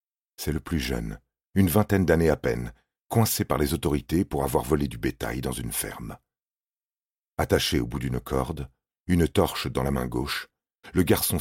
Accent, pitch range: French, 65-85 Hz